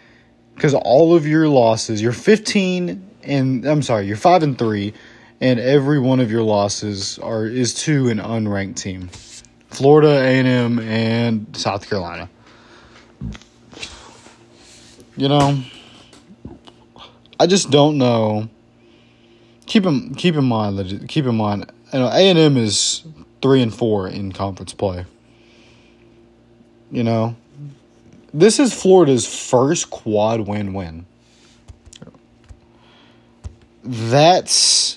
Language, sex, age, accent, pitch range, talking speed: English, male, 20-39, American, 110-140 Hz, 120 wpm